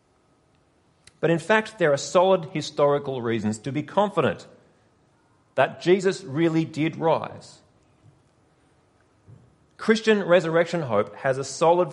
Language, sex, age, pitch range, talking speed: English, male, 40-59, 135-210 Hz, 110 wpm